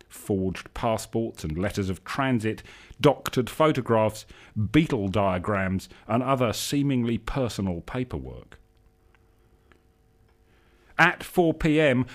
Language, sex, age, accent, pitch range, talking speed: English, male, 40-59, British, 95-130 Hz, 85 wpm